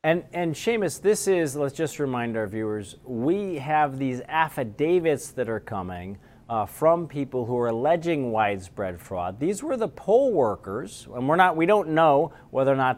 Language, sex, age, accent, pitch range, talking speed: English, male, 40-59, American, 115-160 Hz, 180 wpm